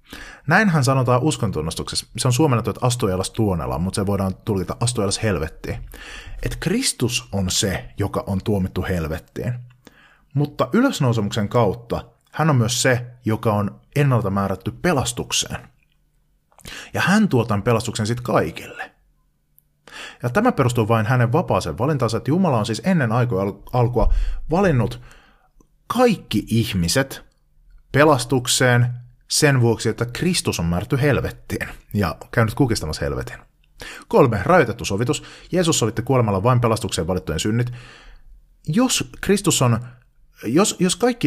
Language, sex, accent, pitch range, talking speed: Finnish, male, native, 100-135 Hz, 125 wpm